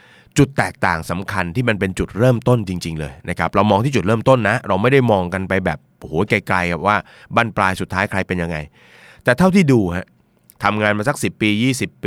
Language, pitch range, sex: Thai, 90-115 Hz, male